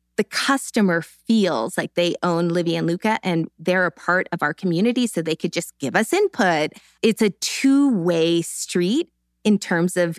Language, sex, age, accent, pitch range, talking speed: English, female, 20-39, American, 165-220 Hz, 175 wpm